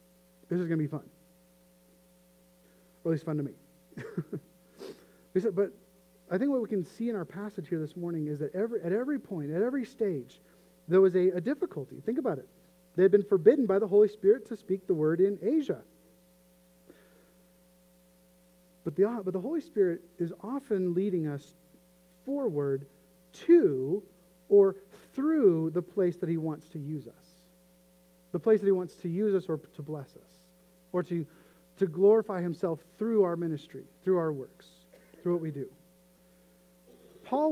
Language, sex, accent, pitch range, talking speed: English, male, American, 155-205 Hz, 170 wpm